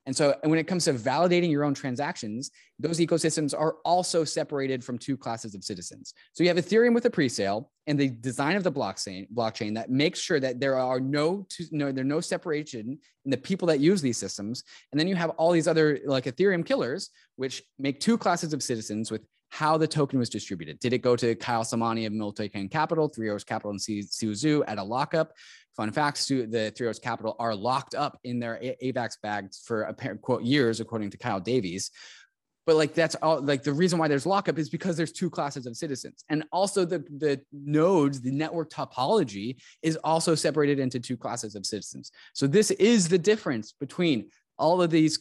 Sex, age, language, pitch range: male, 20-39, English, 120-160 Hz